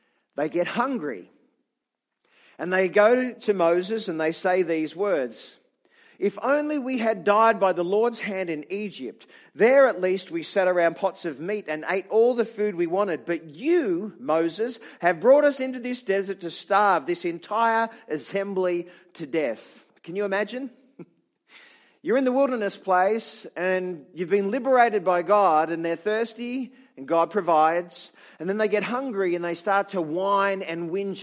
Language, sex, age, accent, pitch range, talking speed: English, male, 50-69, Australian, 180-225 Hz, 170 wpm